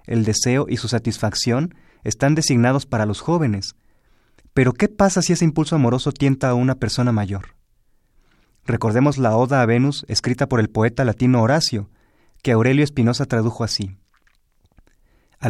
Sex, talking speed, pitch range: male, 150 wpm, 110-130 Hz